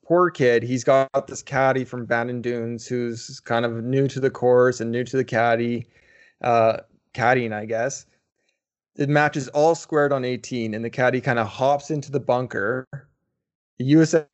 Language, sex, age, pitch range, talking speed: English, male, 20-39, 120-140 Hz, 180 wpm